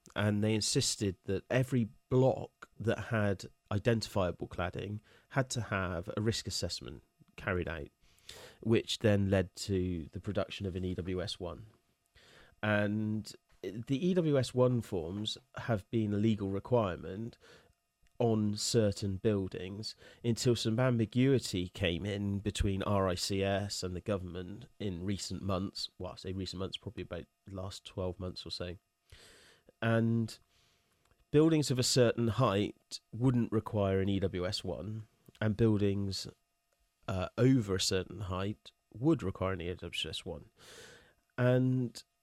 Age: 30-49